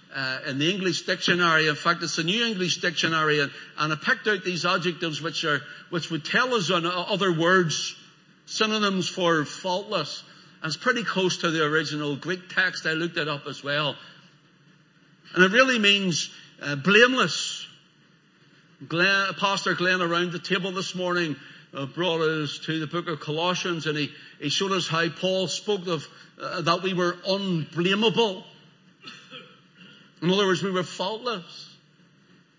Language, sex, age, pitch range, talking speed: English, male, 60-79, 165-200 Hz, 160 wpm